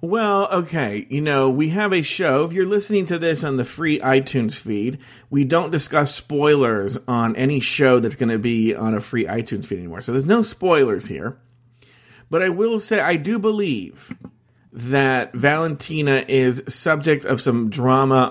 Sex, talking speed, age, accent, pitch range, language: male, 175 wpm, 40-59, American, 125-165 Hz, English